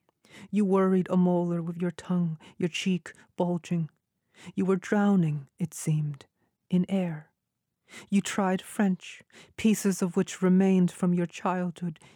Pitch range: 170-185 Hz